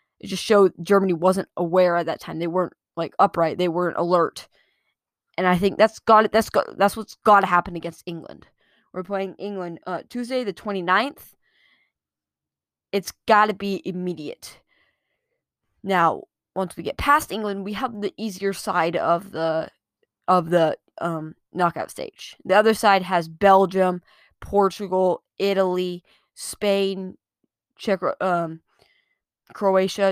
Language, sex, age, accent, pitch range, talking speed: English, female, 20-39, American, 175-215 Hz, 145 wpm